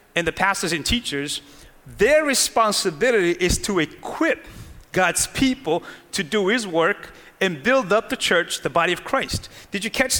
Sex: male